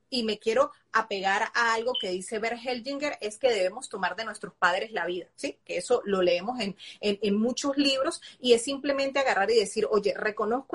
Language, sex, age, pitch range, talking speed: Spanish, female, 30-49, 185-240 Hz, 205 wpm